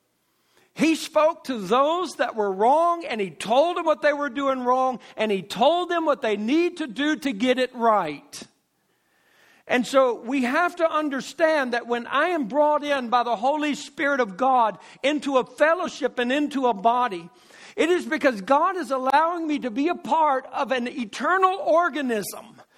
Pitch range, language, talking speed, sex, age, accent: 250-310 Hz, English, 180 wpm, male, 60-79, American